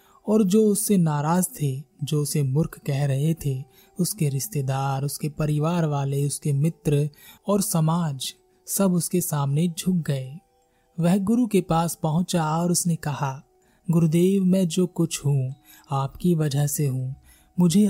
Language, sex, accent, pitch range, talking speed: Hindi, male, native, 140-175 Hz, 160 wpm